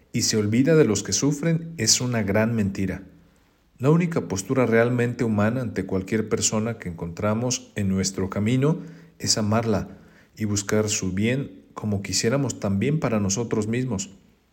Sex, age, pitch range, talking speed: male, 50-69, 100-130 Hz, 150 wpm